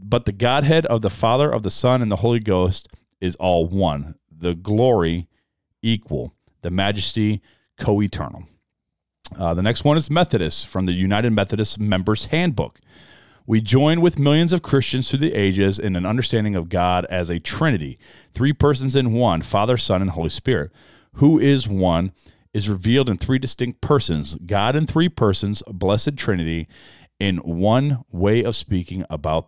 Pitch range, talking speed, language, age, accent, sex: 95-130 Hz, 170 wpm, English, 40-59, American, male